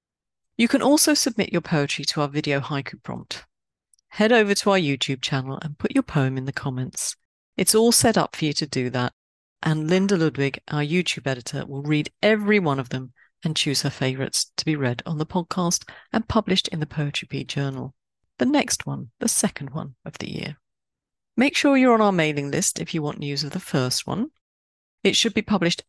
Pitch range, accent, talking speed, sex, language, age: 140-205 Hz, British, 210 wpm, female, English, 40-59